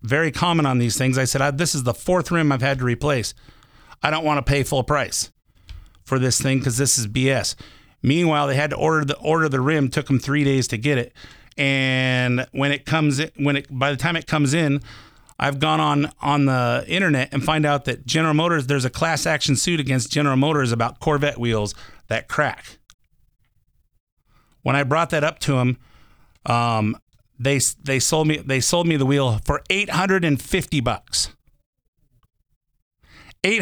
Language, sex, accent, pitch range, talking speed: English, male, American, 120-150 Hz, 190 wpm